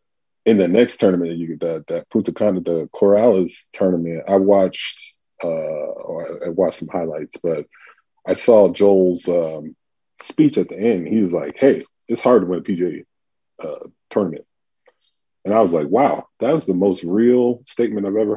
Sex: male